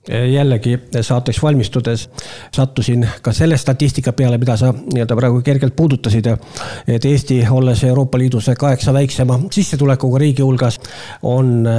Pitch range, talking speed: 120-140 Hz, 125 wpm